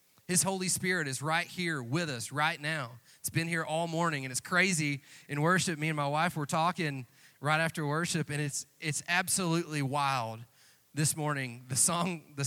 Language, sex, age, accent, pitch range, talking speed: Italian, male, 30-49, American, 140-180 Hz, 190 wpm